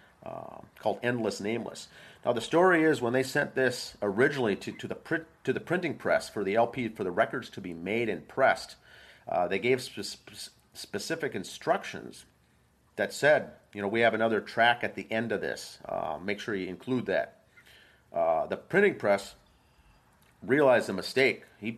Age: 40-59